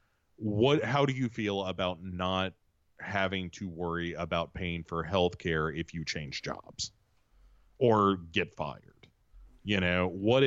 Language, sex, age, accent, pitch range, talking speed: English, male, 30-49, American, 85-115 Hz, 145 wpm